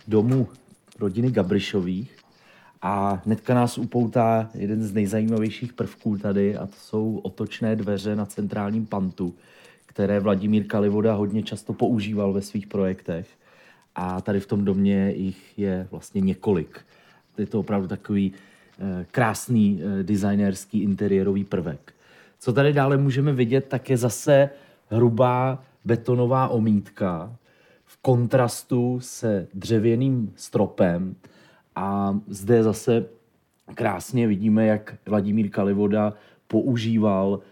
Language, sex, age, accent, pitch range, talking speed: Czech, male, 30-49, native, 100-125 Hz, 110 wpm